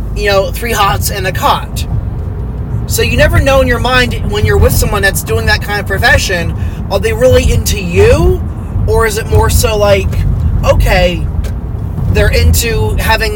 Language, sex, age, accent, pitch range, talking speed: English, male, 30-49, American, 90-140 Hz, 175 wpm